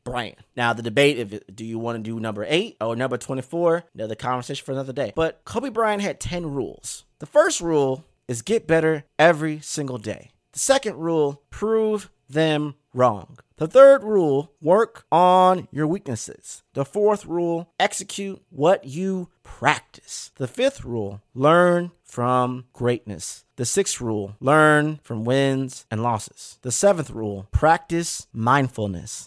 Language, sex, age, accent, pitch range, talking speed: English, male, 30-49, American, 115-160 Hz, 150 wpm